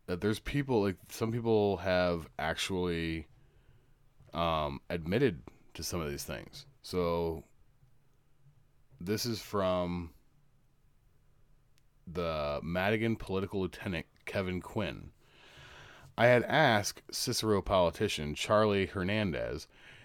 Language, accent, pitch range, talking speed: English, American, 85-120 Hz, 95 wpm